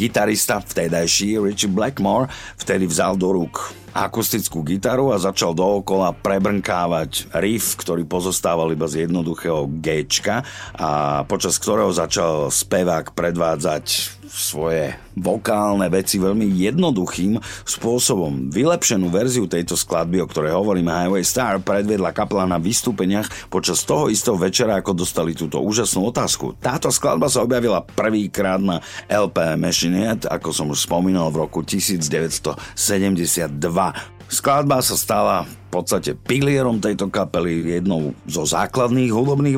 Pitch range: 85-105 Hz